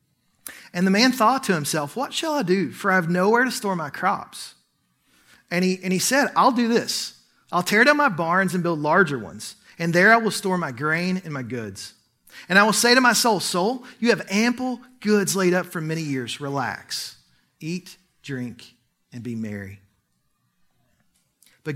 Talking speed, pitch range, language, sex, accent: 190 wpm, 135-195 Hz, English, male, American